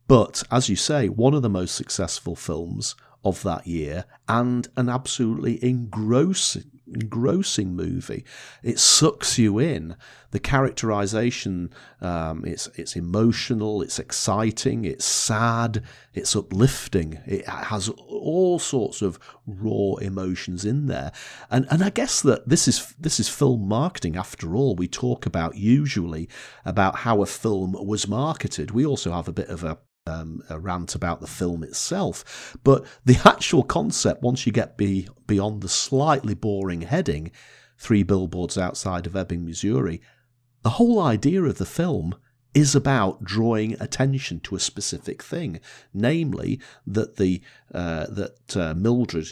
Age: 40-59